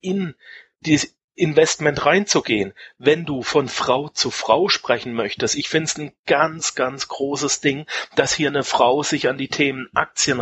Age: 40-59